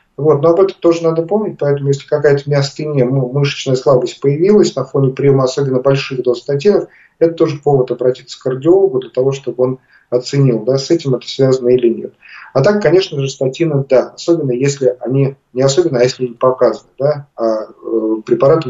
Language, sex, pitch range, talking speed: Russian, male, 125-155 Hz, 180 wpm